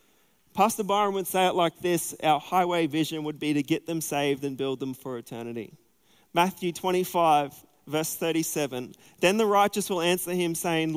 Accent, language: Australian, English